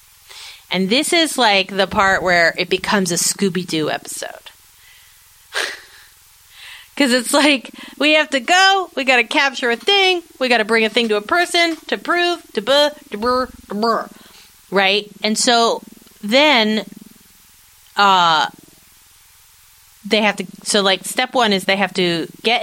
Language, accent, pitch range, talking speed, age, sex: English, American, 175-250 Hz, 150 wpm, 30-49, female